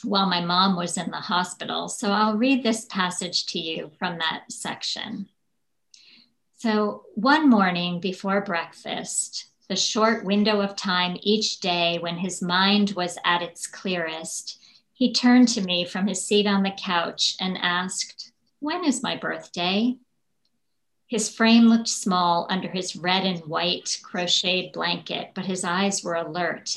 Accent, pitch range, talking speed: American, 175-215 Hz, 150 wpm